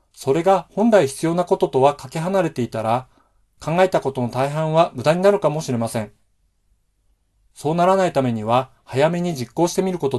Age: 40-59